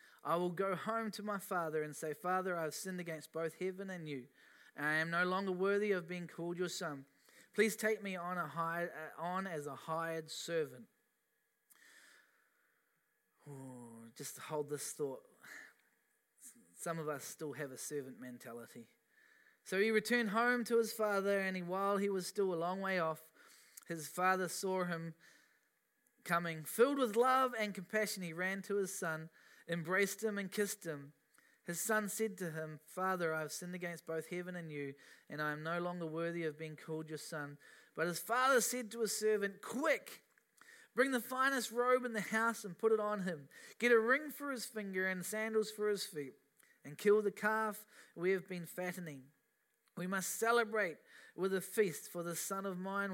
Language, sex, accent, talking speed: English, male, Australian, 180 wpm